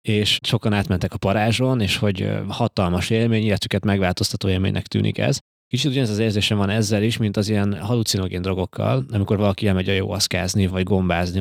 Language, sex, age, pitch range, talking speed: Hungarian, male, 20-39, 95-120 Hz, 180 wpm